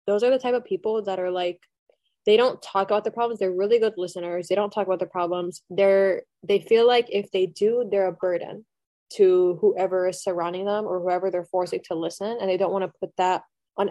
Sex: female